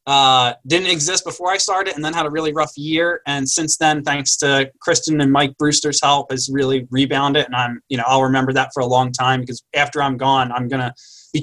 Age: 20-39